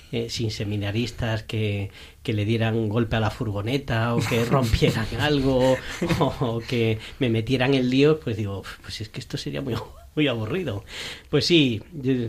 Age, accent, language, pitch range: 40-59, Spanish, Spanish, 120-170 Hz